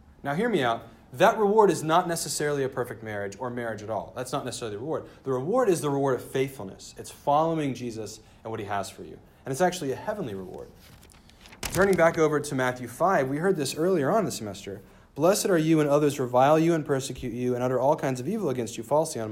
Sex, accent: male, American